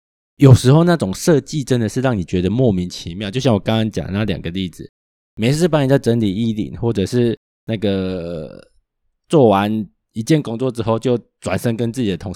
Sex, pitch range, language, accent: male, 95-125 Hz, Chinese, native